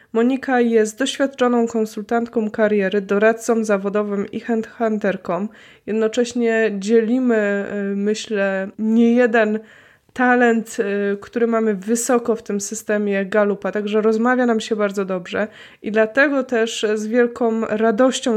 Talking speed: 110 wpm